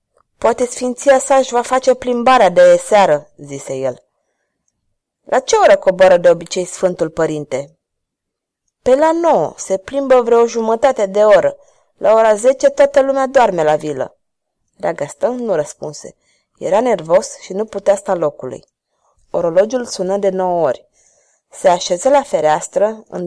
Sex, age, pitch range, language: female, 30-49, 170-245 Hz, Romanian